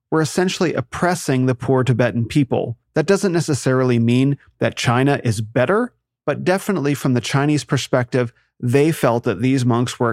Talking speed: 160 wpm